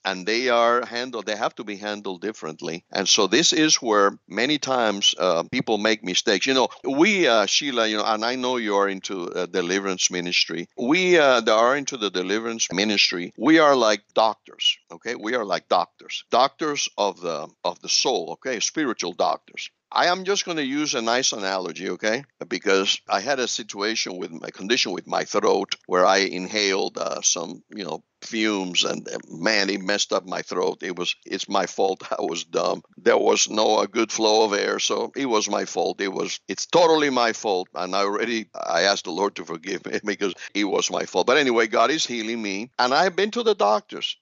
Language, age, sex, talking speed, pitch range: English, 60-79, male, 210 wpm, 100-145 Hz